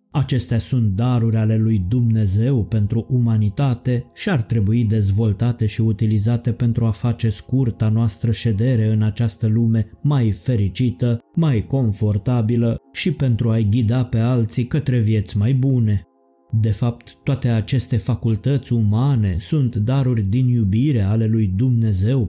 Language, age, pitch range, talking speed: Romanian, 20-39, 110-125 Hz, 135 wpm